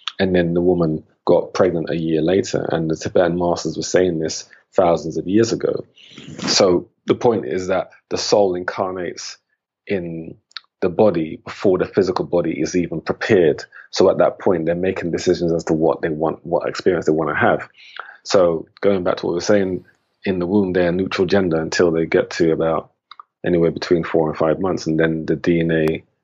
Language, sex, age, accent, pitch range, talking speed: English, male, 30-49, British, 80-90 Hz, 195 wpm